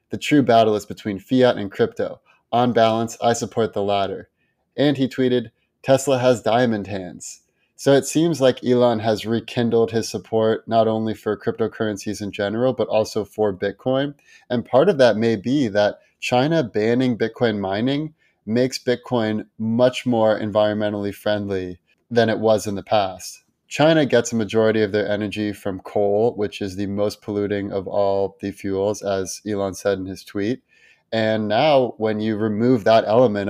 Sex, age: male, 20-39